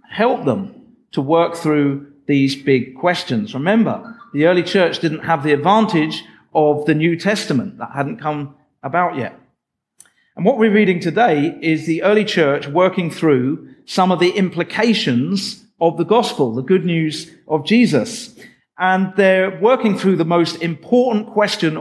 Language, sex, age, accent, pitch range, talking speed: English, male, 50-69, British, 140-185 Hz, 155 wpm